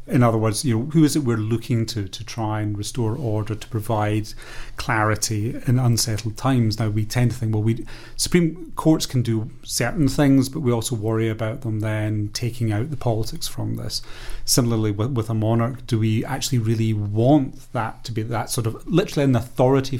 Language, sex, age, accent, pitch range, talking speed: English, male, 30-49, British, 110-130 Hz, 200 wpm